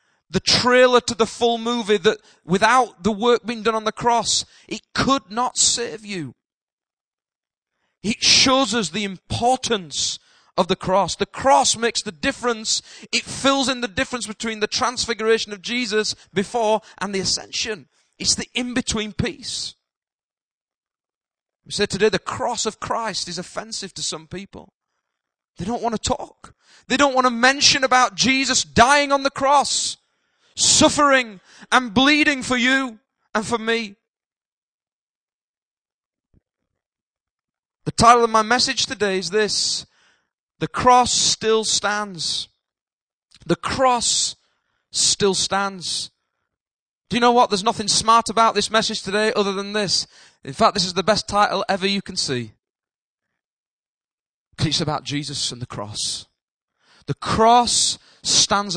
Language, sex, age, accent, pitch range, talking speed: English, male, 30-49, British, 190-245 Hz, 140 wpm